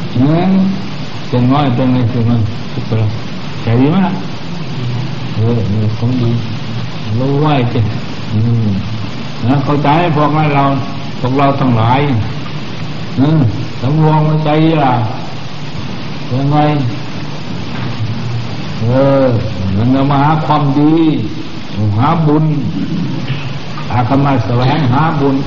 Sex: male